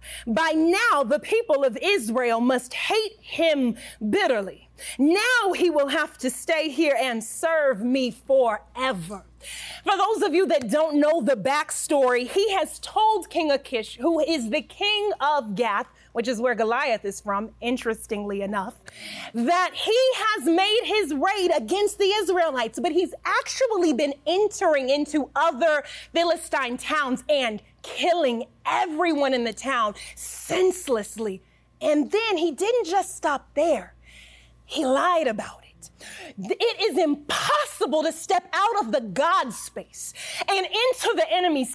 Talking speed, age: 140 wpm, 30-49